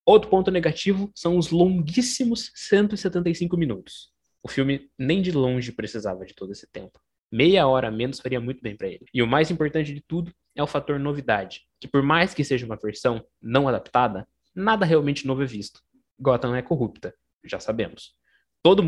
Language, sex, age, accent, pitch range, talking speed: Portuguese, male, 20-39, Brazilian, 115-165 Hz, 180 wpm